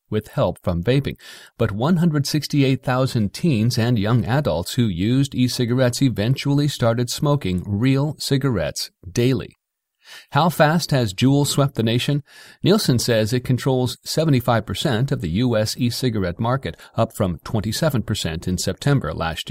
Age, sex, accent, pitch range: 40-59, male, American, 110-140 Hz